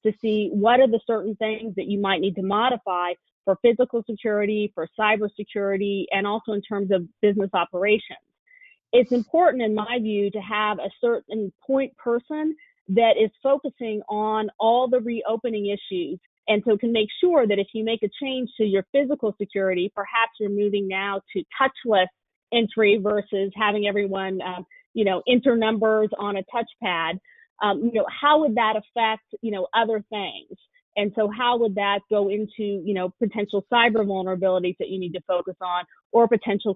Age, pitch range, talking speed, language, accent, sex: 30-49, 200-235 Hz, 175 wpm, English, American, female